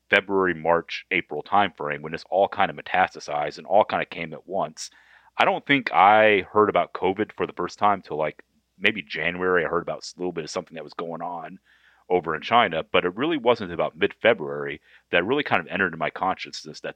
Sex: male